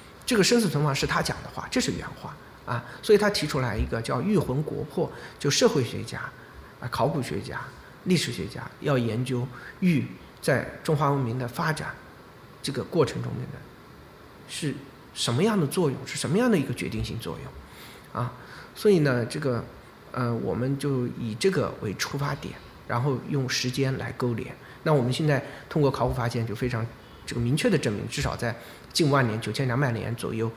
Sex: male